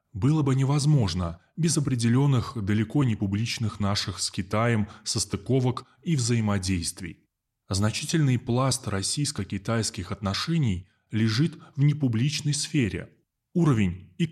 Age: 20-39